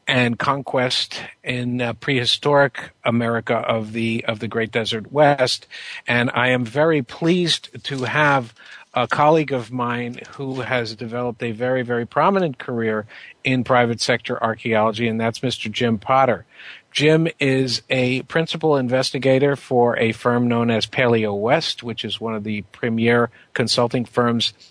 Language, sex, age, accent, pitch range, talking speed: English, male, 50-69, American, 115-130 Hz, 145 wpm